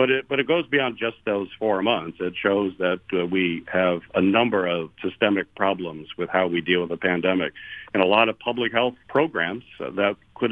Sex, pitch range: male, 95-110 Hz